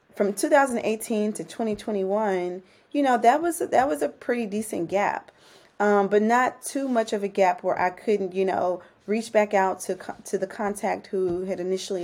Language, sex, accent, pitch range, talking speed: English, female, American, 190-220 Hz, 190 wpm